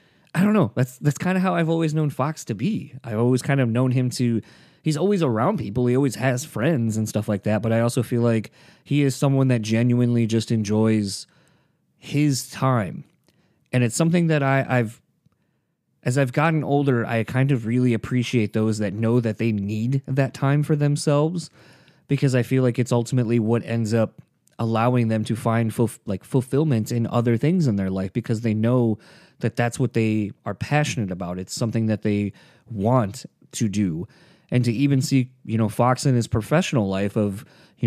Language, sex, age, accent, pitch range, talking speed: English, male, 20-39, American, 110-140 Hz, 195 wpm